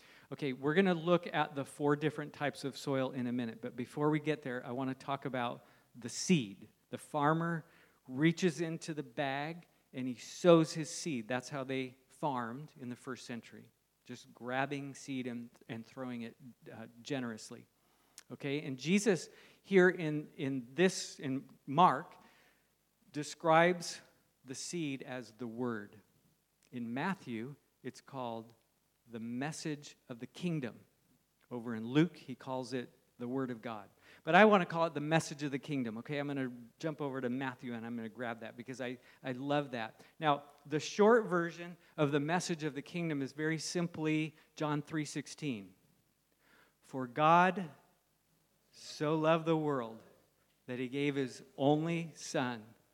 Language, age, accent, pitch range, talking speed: English, 50-69, American, 125-155 Hz, 165 wpm